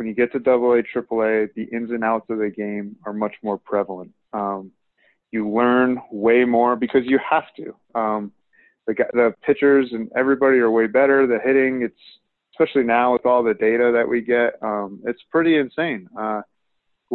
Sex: male